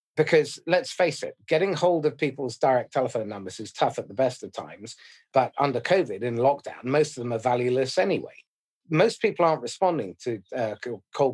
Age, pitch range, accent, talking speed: 40-59, 125-160 Hz, British, 190 wpm